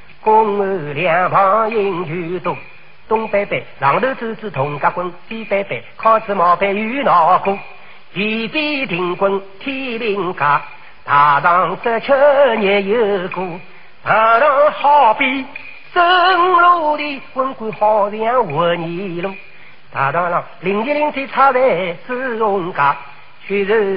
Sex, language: male, Chinese